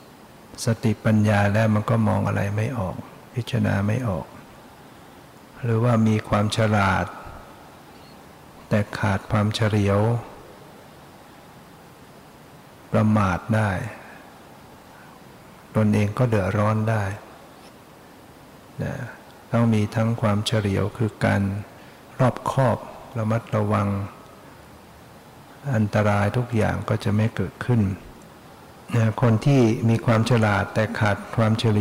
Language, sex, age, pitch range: English, male, 60-79, 105-115 Hz